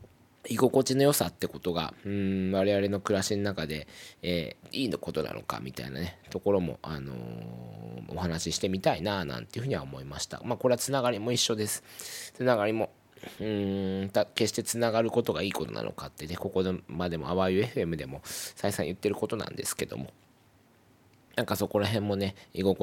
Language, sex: Japanese, male